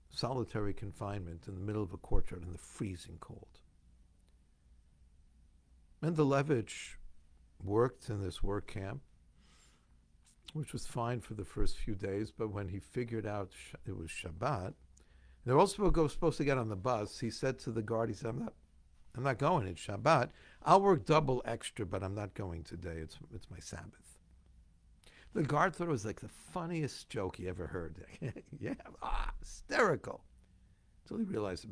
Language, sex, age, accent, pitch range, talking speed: English, male, 60-79, American, 80-110 Hz, 175 wpm